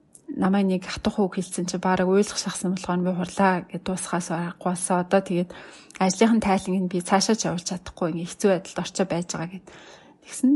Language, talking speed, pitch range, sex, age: English, 165 wpm, 175-205 Hz, female, 30-49